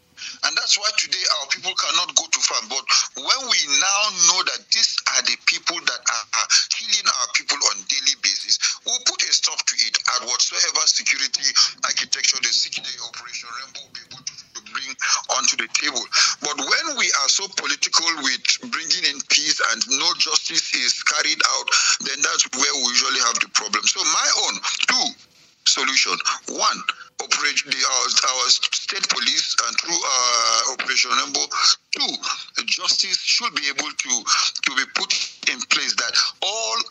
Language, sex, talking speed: English, male, 170 wpm